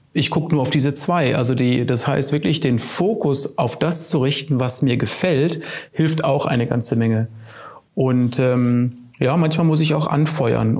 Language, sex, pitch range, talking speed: German, male, 125-155 Hz, 185 wpm